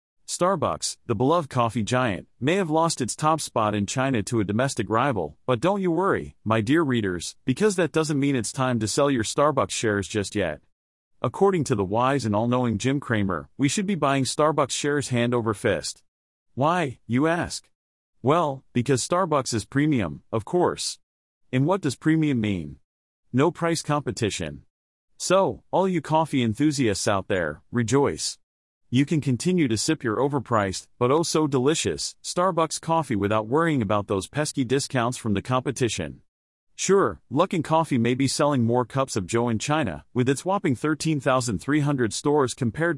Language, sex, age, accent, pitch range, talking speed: English, male, 30-49, American, 110-150 Hz, 170 wpm